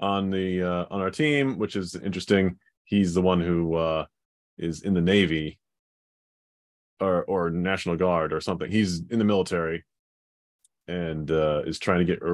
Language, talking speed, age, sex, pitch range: English, 170 wpm, 30-49, male, 85-105 Hz